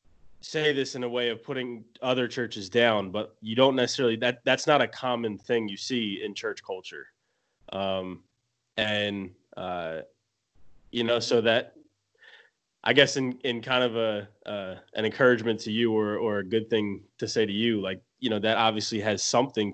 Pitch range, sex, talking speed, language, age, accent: 100-120 Hz, male, 180 wpm, English, 20-39, American